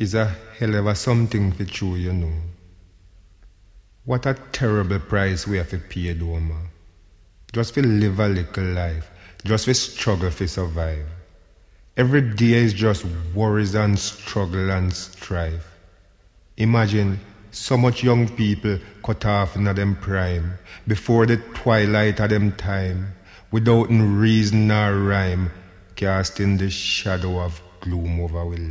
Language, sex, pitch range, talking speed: English, male, 90-105 Hz, 140 wpm